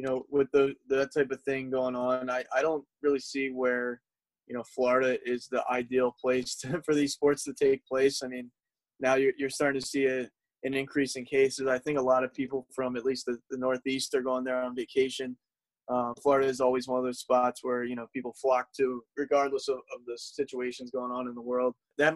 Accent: American